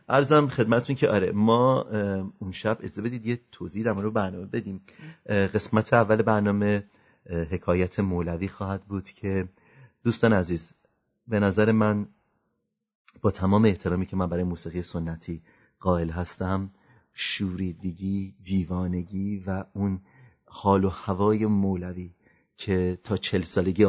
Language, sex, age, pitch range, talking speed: English, male, 30-49, 95-110 Hz, 125 wpm